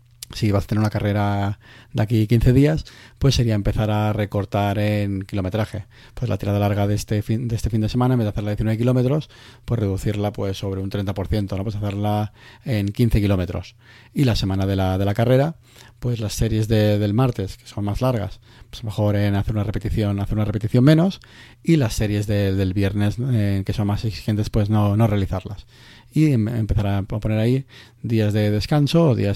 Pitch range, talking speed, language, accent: 105-120 Hz, 205 wpm, Spanish, Spanish